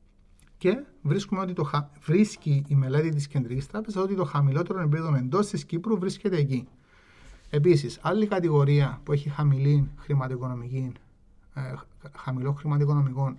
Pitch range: 130-180 Hz